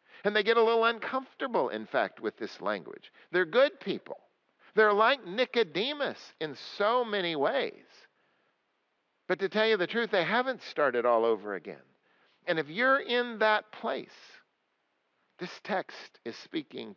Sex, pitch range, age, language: male, 180-235 Hz, 50-69, English